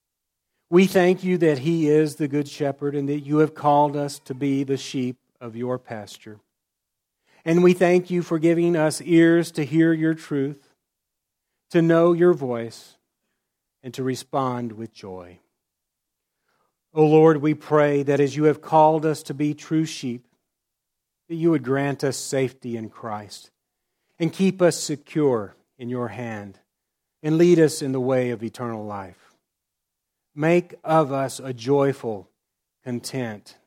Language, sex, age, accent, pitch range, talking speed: English, male, 40-59, American, 120-155 Hz, 155 wpm